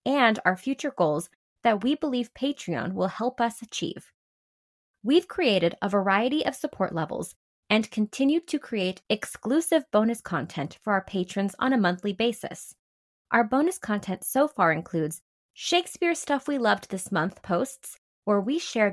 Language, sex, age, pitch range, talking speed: English, female, 20-39, 190-260 Hz, 155 wpm